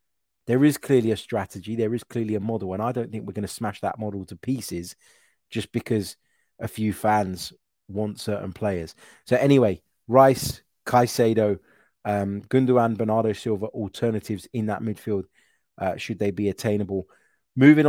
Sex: male